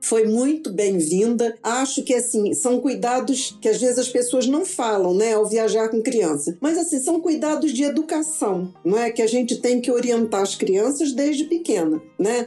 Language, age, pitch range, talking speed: Portuguese, 50-69, 220-305 Hz, 190 wpm